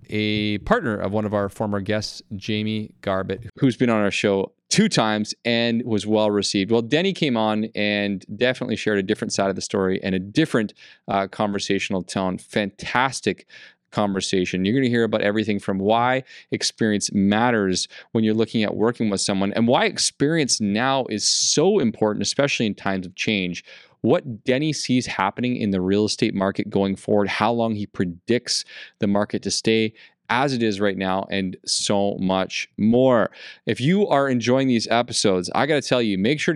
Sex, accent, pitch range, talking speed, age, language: male, American, 100-125 Hz, 180 wpm, 20-39, English